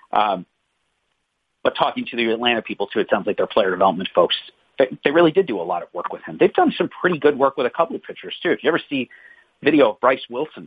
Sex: male